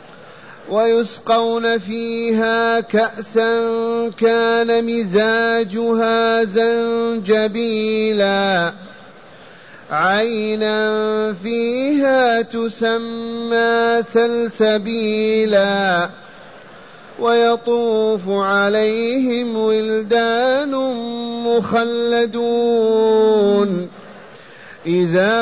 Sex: male